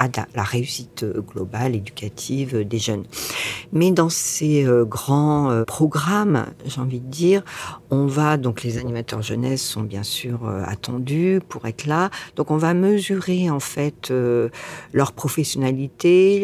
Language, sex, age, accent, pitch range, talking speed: French, female, 50-69, French, 130-165 Hz, 150 wpm